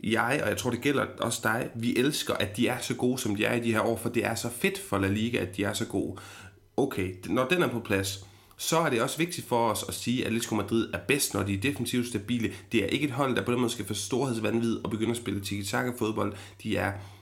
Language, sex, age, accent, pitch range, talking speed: Danish, male, 30-49, native, 100-120 Hz, 280 wpm